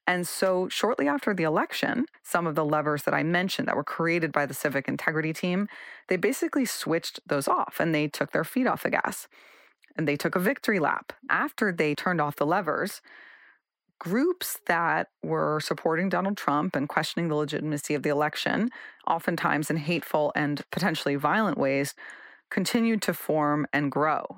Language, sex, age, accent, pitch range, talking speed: English, female, 30-49, American, 150-180 Hz, 175 wpm